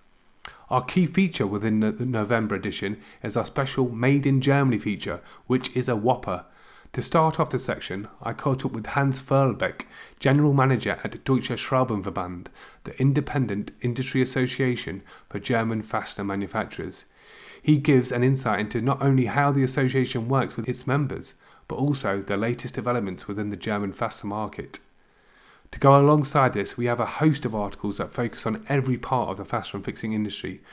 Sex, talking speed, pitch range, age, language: male, 170 wpm, 110-135 Hz, 30-49, English